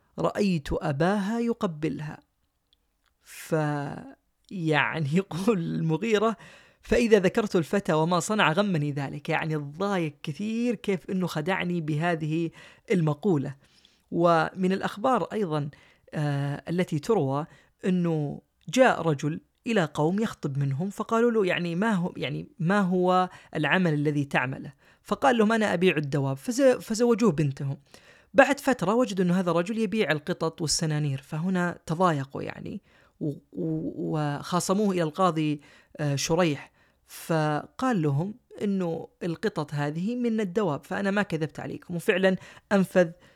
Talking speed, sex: 115 wpm, female